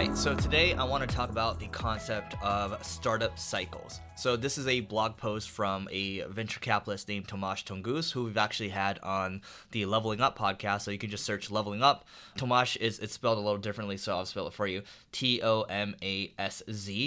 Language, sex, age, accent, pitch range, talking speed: English, male, 20-39, American, 100-120 Hz, 195 wpm